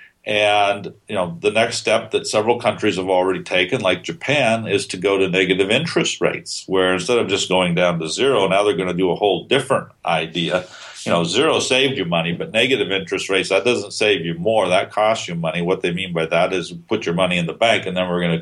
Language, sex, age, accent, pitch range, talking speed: English, male, 50-69, American, 85-95 Hz, 240 wpm